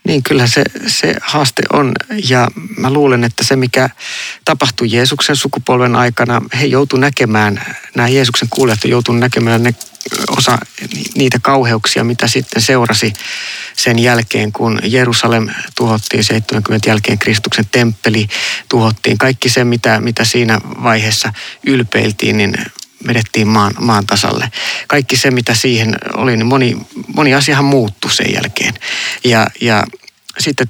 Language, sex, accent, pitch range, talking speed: Finnish, male, native, 110-130 Hz, 130 wpm